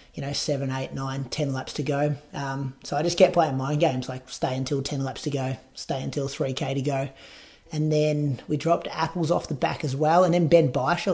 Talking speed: 230 wpm